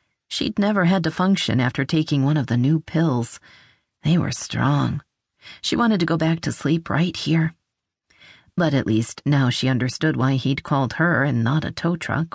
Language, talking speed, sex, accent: English, 190 wpm, female, American